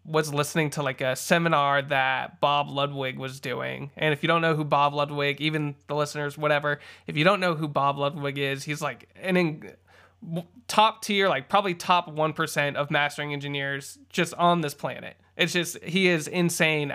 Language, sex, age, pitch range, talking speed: English, male, 20-39, 135-170 Hz, 190 wpm